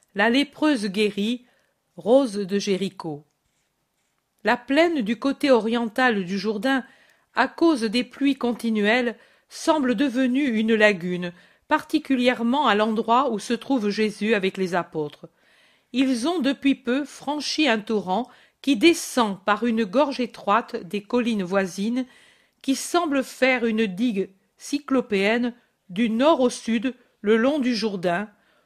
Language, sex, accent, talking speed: French, female, French, 130 wpm